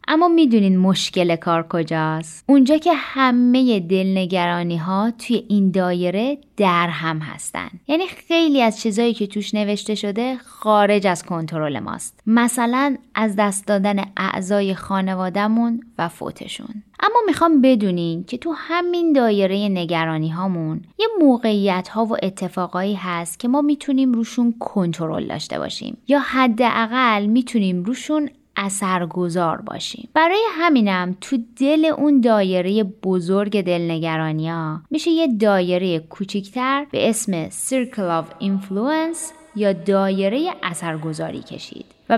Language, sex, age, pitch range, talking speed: Persian, female, 20-39, 185-255 Hz, 120 wpm